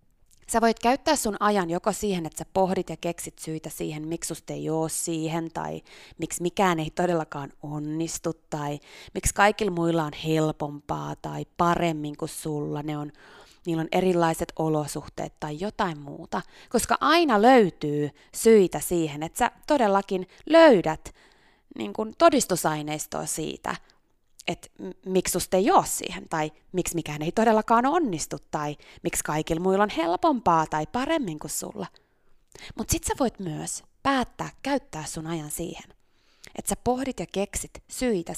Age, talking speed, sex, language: 20-39, 140 wpm, female, Finnish